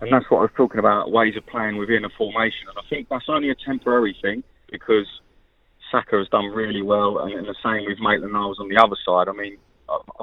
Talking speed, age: 240 wpm, 30-49